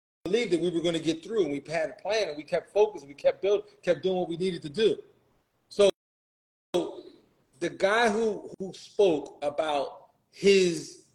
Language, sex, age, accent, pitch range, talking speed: English, male, 40-59, American, 170-215 Hz, 195 wpm